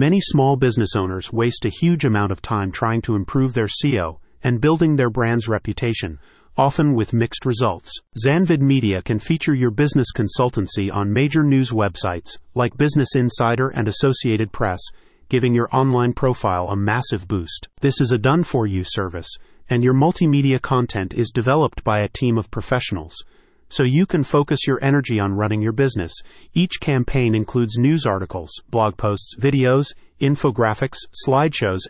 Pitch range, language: 105-135 Hz, English